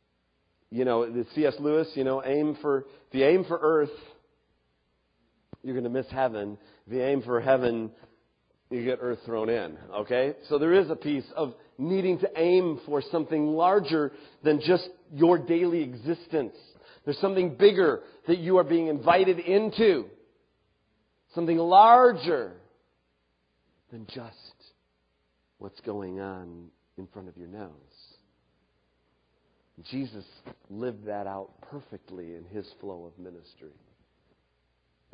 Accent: American